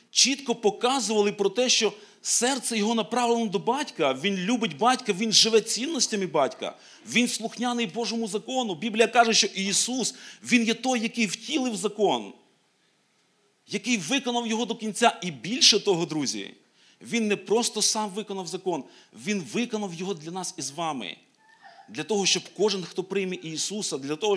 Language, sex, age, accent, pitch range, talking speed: Ukrainian, male, 40-59, native, 170-230 Hz, 155 wpm